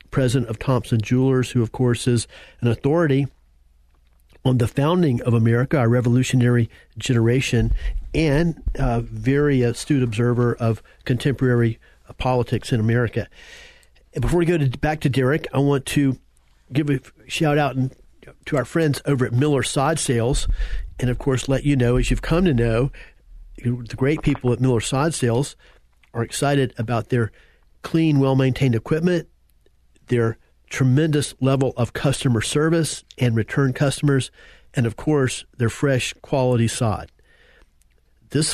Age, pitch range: 50-69, 115-145 Hz